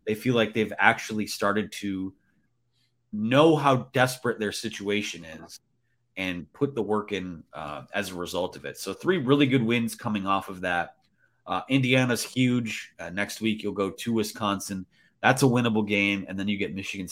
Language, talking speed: English, 180 wpm